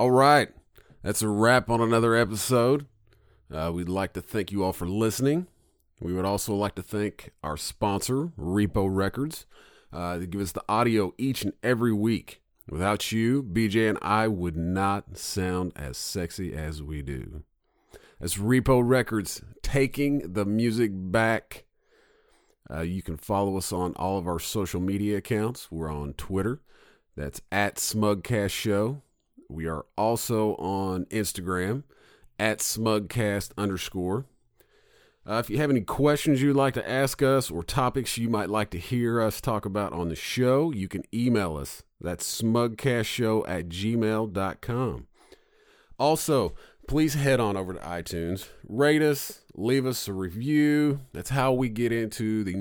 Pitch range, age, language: 95-125 Hz, 40-59, English